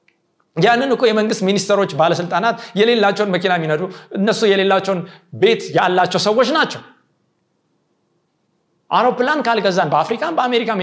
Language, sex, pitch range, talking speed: Amharic, male, 160-240 Hz, 95 wpm